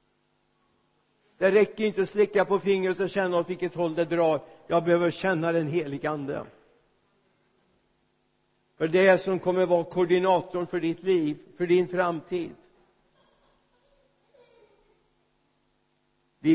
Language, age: Swedish, 60-79